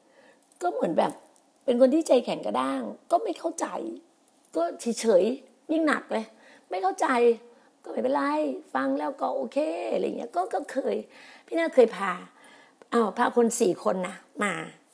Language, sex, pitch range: Thai, female, 235-280 Hz